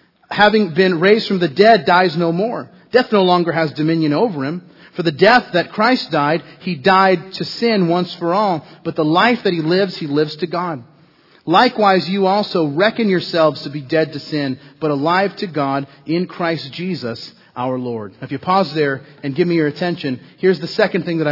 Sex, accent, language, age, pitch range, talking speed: male, American, English, 40-59, 145-185 Hz, 205 wpm